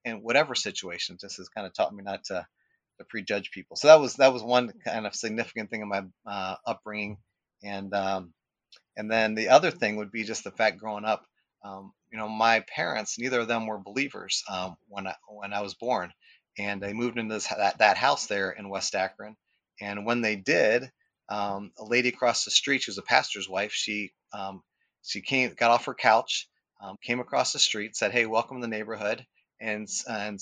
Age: 30-49